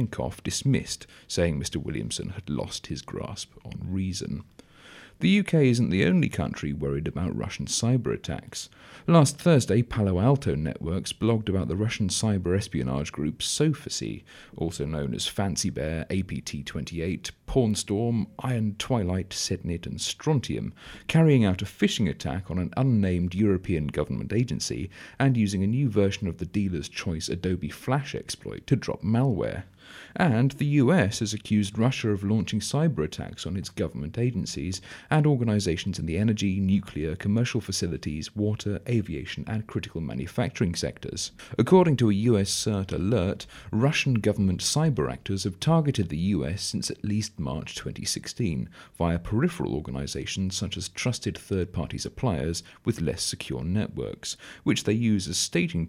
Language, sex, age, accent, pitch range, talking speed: English, male, 40-59, British, 90-115 Hz, 145 wpm